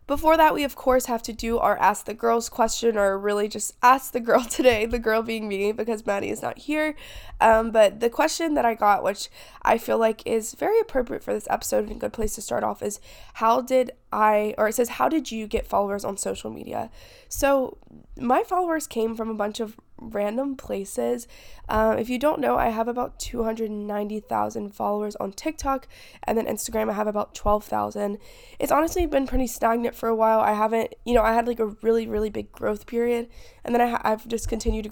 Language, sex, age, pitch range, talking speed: English, female, 20-39, 210-255 Hz, 215 wpm